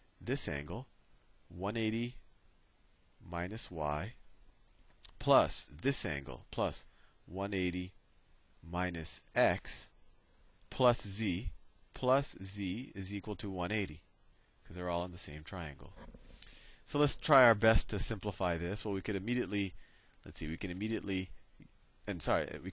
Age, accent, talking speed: 30-49, American, 125 wpm